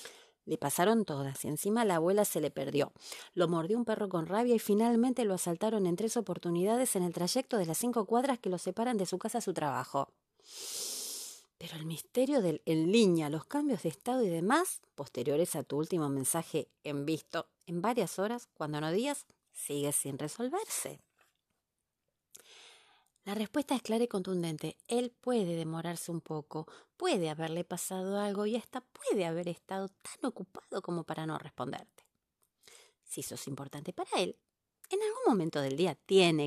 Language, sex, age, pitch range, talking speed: Spanish, female, 30-49, 160-235 Hz, 170 wpm